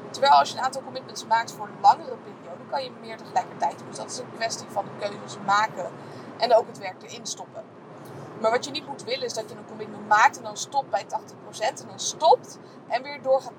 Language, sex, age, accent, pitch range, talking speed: Dutch, female, 20-39, Dutch, 210-265 Hz, 245 wpm